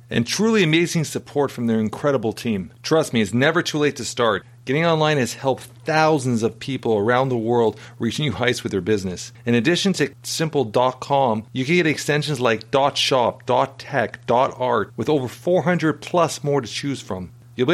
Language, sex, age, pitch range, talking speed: English, male, 40-59, 120-165 Hz, 180 wpm